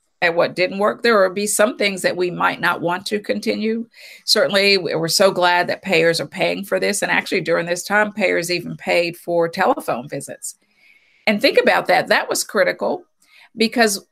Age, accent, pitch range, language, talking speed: 50-69, American, 170-205 Hz, English, 190 wpm